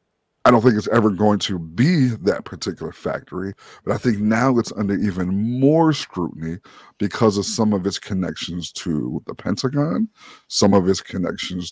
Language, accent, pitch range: English, American, 95-125 Hz